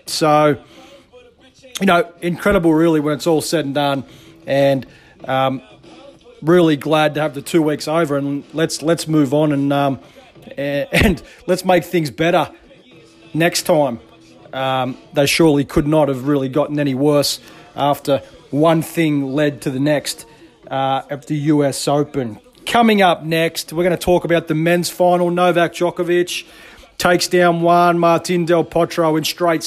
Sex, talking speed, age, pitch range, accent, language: male, 160 wpm, 30-49, 145-175 Hz, Australian, English